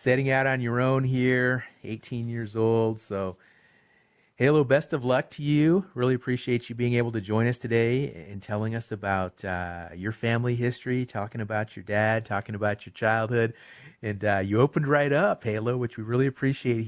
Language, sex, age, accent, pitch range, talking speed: English, male, 40-59, American, 100-125 Hz, 185 wpm